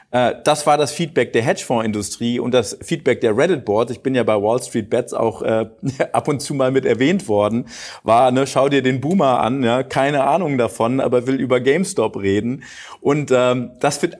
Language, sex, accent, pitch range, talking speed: German, male, German, 120-160 Hz, 205 wpm